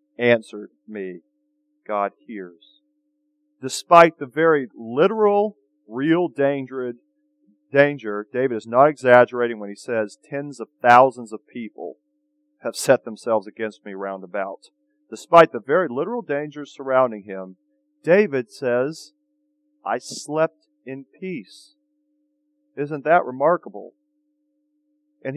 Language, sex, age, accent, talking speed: English, male, 40-59, American, 110 wpm